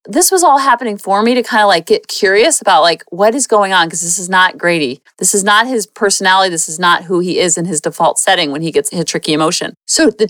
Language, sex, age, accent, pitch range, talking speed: English, female, 40-59, American, 190-270 Hz, 270 wpm